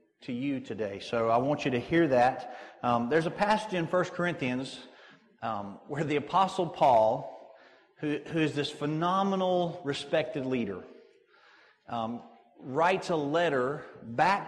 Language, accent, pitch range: English, American, 130-175 Hz